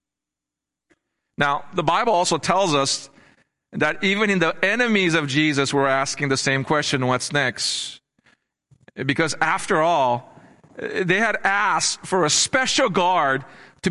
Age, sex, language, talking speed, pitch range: 40-59, male, English, 135 wpm, 135-190 Hz